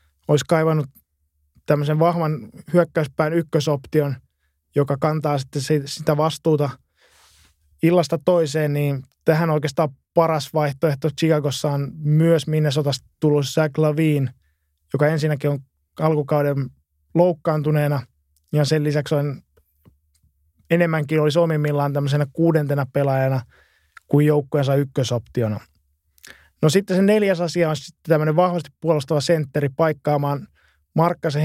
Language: Finnish